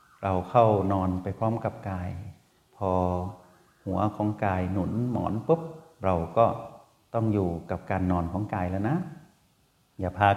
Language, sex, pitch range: Thai, male, 95-115 Hz